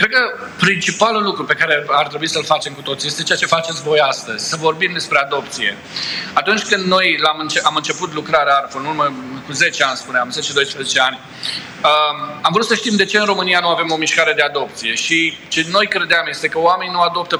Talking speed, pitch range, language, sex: 215 wpm, 160-205 Hz, Romanian, male